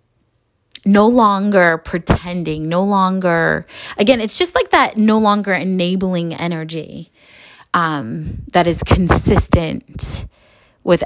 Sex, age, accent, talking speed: female, 20-39, American, 105 wpm